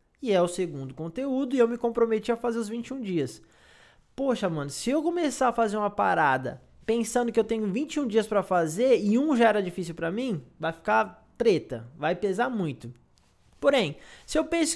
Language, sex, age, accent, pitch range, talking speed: Portuguese, male, 20-39, Brazilian, 170-250 Hz, 195 wpm